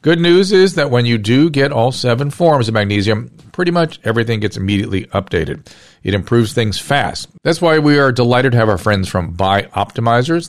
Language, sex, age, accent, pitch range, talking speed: English, male, 40-59, American, 105-140 Hz, 195 wpm